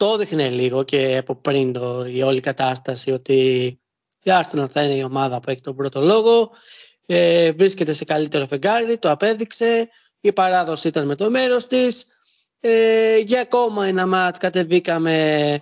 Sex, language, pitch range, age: male, Greek, 150-220 Hz, 30-49